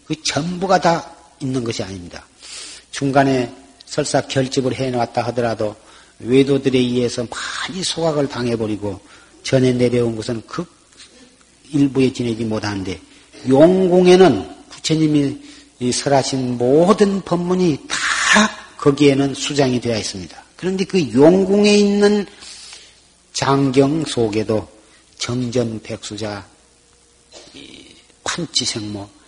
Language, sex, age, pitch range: Korean, male, 40-59, 120-170 Hz